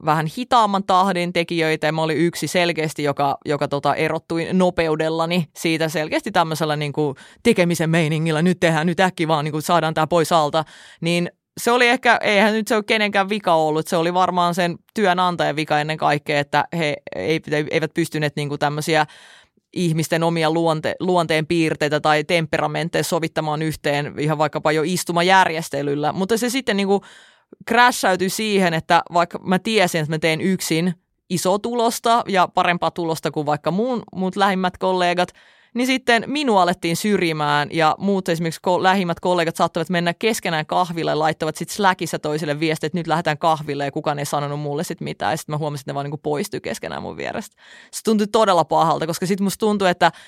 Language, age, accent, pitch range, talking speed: Finnish, 20-39, native, 155-185 Hz, 175 wpm